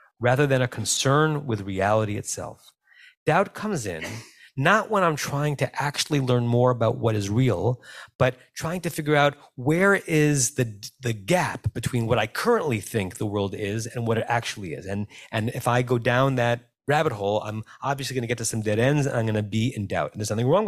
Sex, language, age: male, English, 30-49